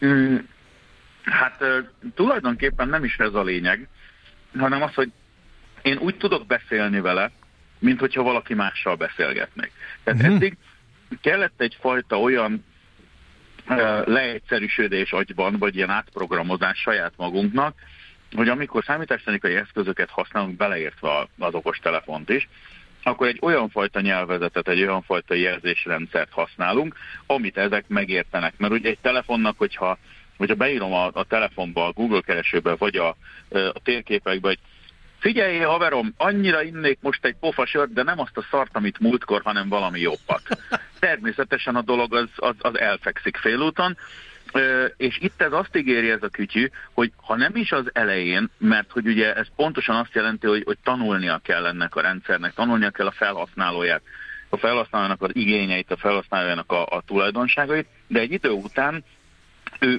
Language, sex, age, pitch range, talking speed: Hungarian, male, 60-79, 95-130 Hz, 145 wpm